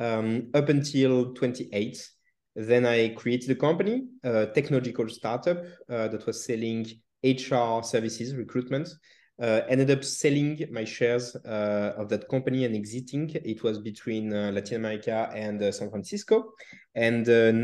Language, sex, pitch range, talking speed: English, male, 110-135 Hz, 145 wpm